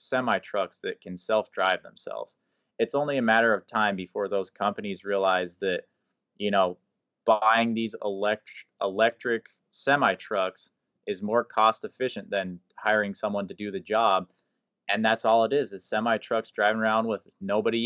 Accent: American